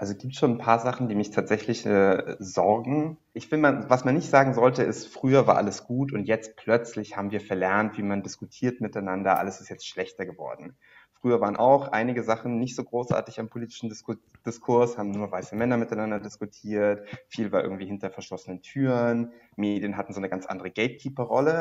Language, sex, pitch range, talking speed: German, male, 105-130 Hz, 195 wpm